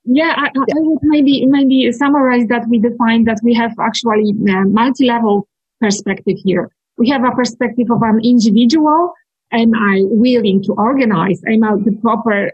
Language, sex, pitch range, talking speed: English, female, 210-250 Hz, 165 wpm